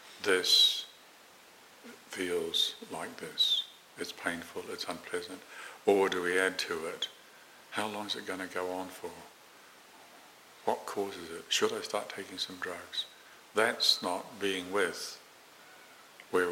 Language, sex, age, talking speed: English, male, 60-79, 140 wpm